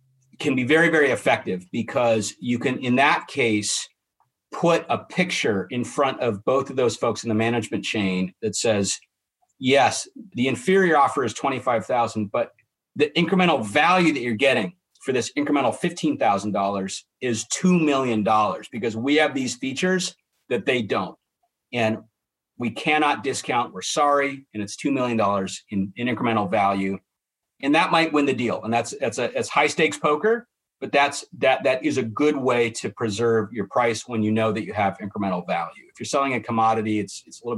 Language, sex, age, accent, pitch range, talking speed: English, male, 40-59, American, 110-150 Hz, 180 wpm